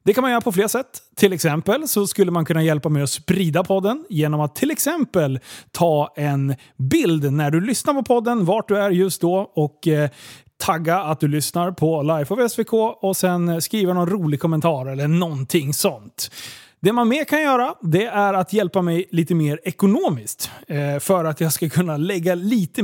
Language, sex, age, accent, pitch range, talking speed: Swedish, male, 30-49, native, 155-225 Hz, 195 wpm